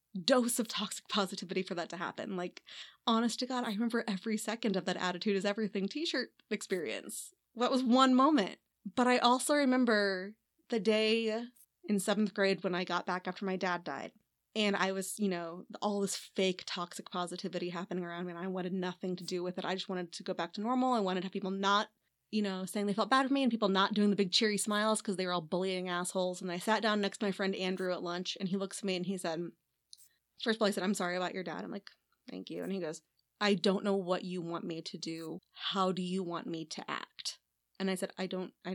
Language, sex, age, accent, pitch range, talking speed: English, female, 20-39, American, 185-245 Hz, 250 wpm